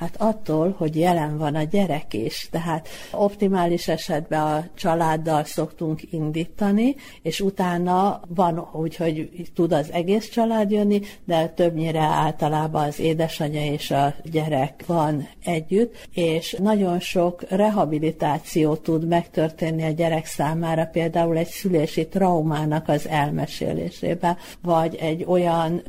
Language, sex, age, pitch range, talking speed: Hungarian, female, 60-79, 160-180 Hz, 125 wpm